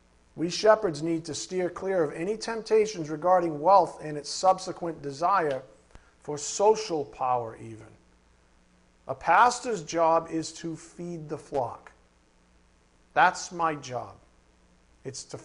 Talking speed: 125 wpm